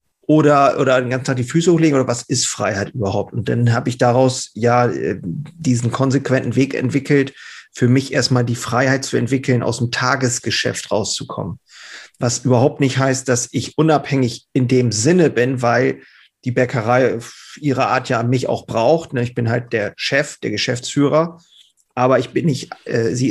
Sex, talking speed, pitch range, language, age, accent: male, 170 wpm, 120-135 Hz, German, 40-59, German